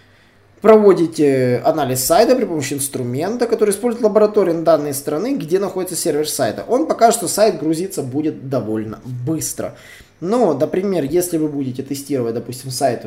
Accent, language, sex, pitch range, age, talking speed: native, Russian, male, 130-190 Hz, 20-39, 145 wpm